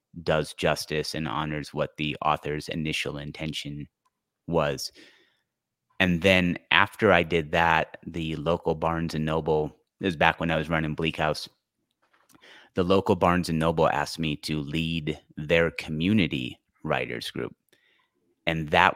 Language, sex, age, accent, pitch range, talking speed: English, male, 30-49, American, 75-85 Hz, 140 wpm